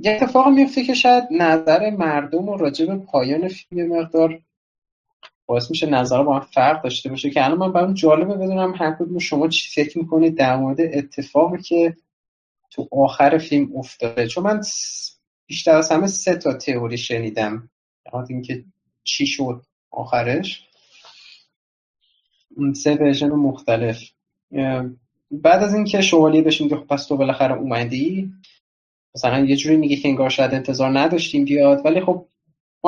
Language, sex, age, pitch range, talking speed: Persian, male, 30-49, 135-180 Hz, 150 wpm